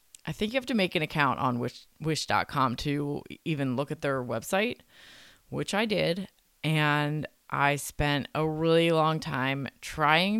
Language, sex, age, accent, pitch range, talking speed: English, female, 20-39, American, 145-190 Hz, 160 wpm